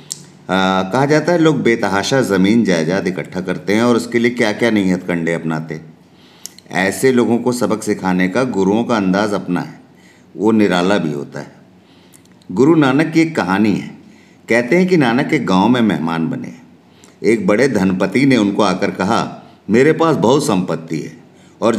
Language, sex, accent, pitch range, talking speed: Hindi, male, native, 95-125 Hz, 175 wpm